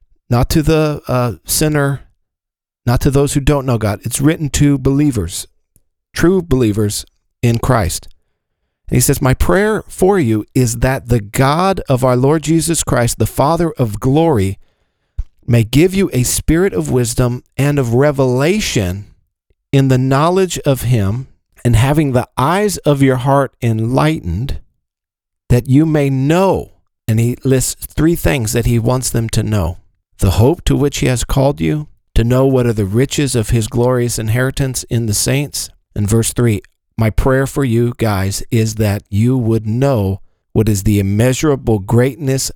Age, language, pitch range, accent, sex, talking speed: 50-69, English, 105-135 Hz, American, male, 165 wpm